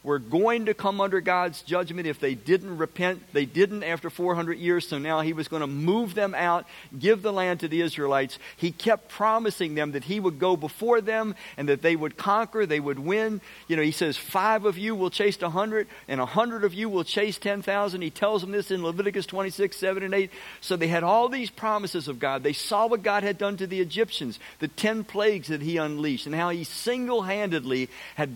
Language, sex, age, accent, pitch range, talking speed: English, male, 50-69, American, 155-210 Hz, 220 wpm